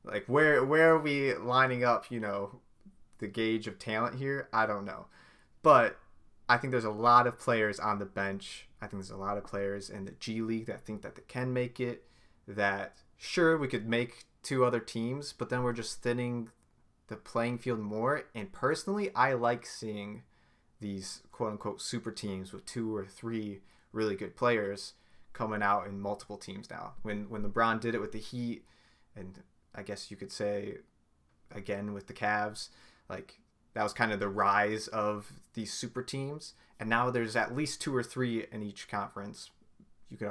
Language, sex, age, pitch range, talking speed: English, male, 20-39, 105-135 Hz, 190 wpm